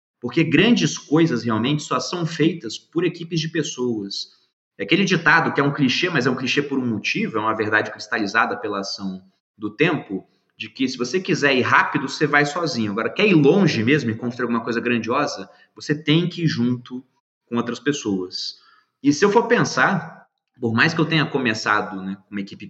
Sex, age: male, 20-39